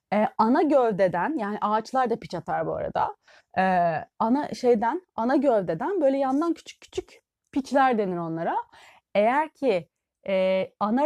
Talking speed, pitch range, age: 140 wpm, 210-290 Hz, 30-49